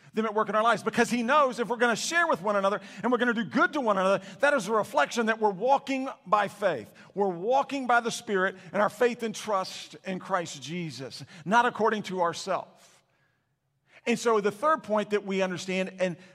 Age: 50-69